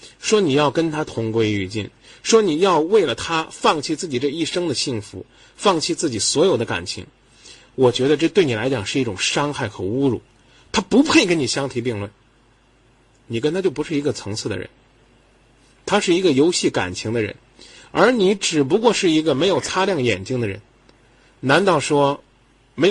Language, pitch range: Chinese, 120-185 Hz